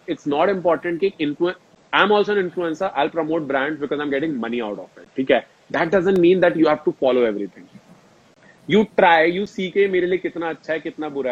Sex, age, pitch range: male, 30-49, 150-195 Hz